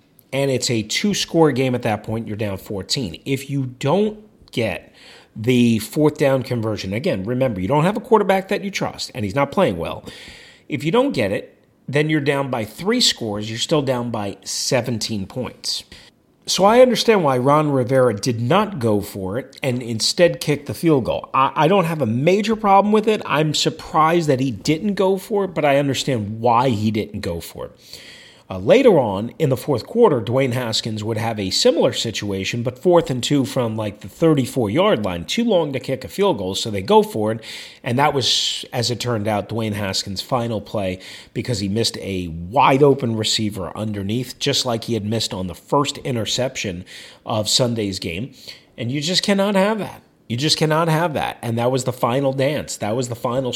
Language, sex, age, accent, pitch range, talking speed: English, male, 40-59, American, 110-155 Hz, 200 wpm